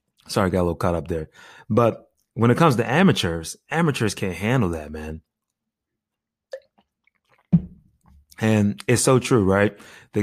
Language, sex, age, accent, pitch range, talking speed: English, male, 20-39, American, 85-105 Hz, 145 wpm